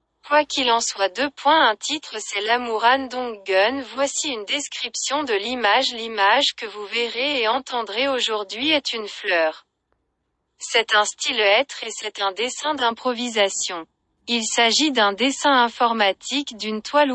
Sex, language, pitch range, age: female, Korean, 210-275 Hz, 30-49